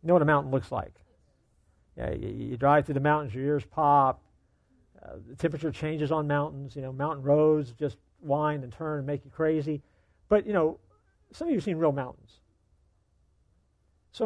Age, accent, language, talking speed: 50-69, American, English, 190 wpm